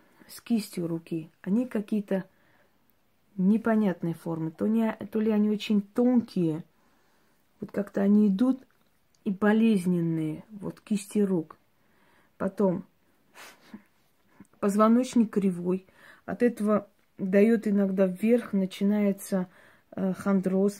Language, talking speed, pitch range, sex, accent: Russian, 90 wpm, 185-215 Hz, female, native